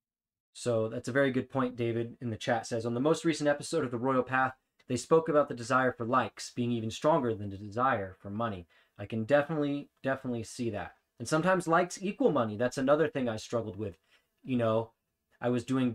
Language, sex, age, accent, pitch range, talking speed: English, male, 20-39, American, 115-135 Hz, 220 wpm